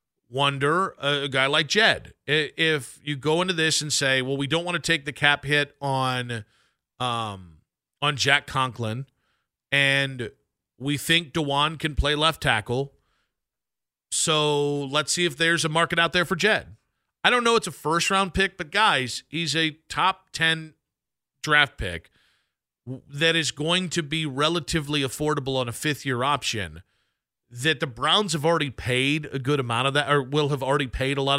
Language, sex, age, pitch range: English, male, 40-59, 130-160 Hz